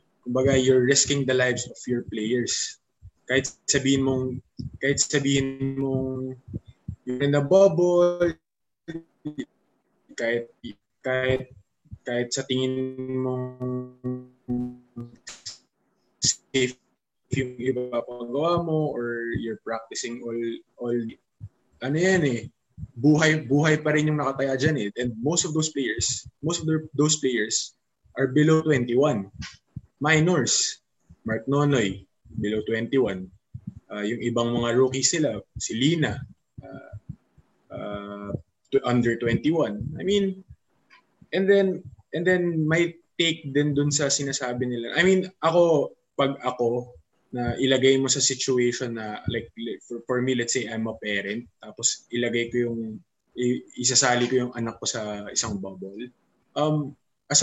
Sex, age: male, 20-39